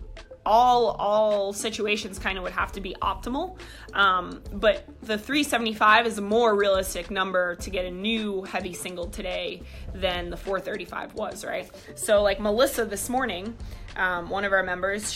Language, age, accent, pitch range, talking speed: English, 20-39, American, 190-225 Hz, 160 wpm